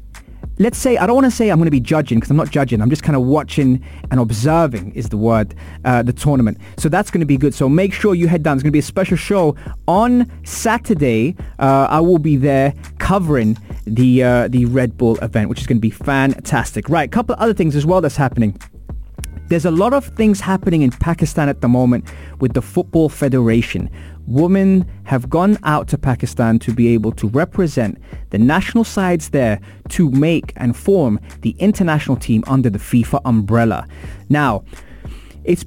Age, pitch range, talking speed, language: 20-39, 115-175 Hz, 205 wpm, English